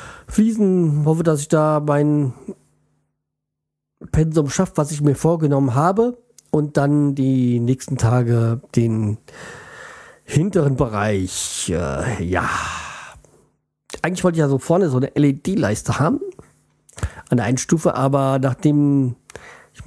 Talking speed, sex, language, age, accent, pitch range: 120 wpm, male, German, 40-59, German, 125-150 Hz